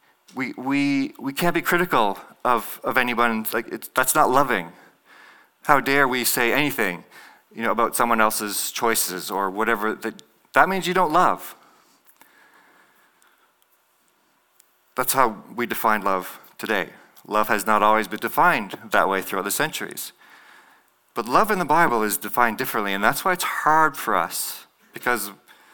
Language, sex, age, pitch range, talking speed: English, male, 40-59, 110-155 Hz, 155 wpm